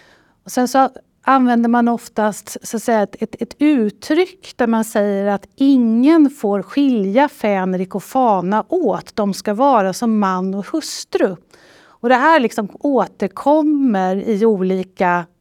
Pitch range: 185-245 Hz